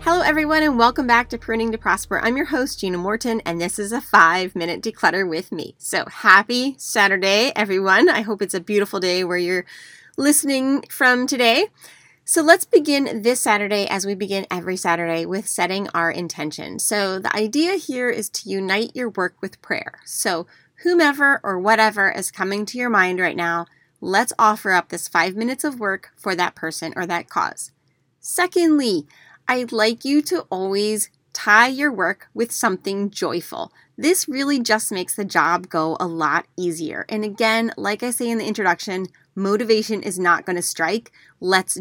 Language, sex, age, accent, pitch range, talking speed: English, female, 30-49, American, 180-235 Hz, 180 wpm